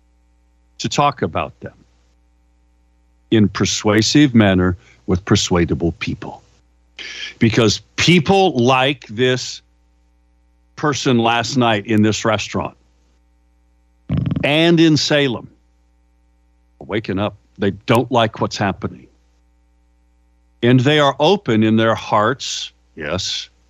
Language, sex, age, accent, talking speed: English, male, 60-79, American, 100 wpm